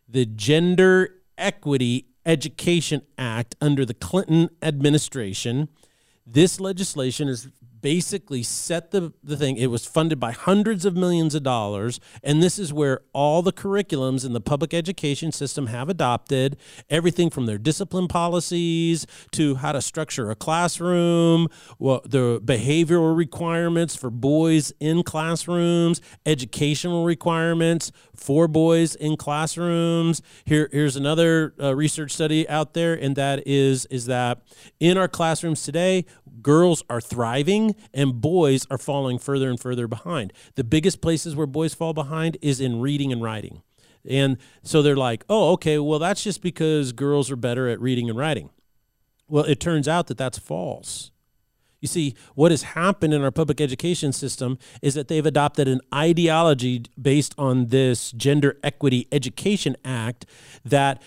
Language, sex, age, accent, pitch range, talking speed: English, male, 40-59, American, 130-165 Hz, 150 wpm